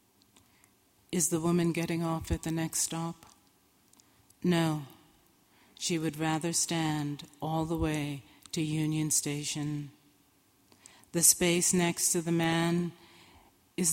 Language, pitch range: English, 150-170 Hz